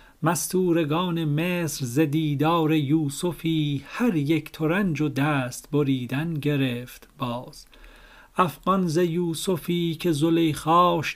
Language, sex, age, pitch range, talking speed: Persian, male, 40-59, 145-170 Hz, 85 wpm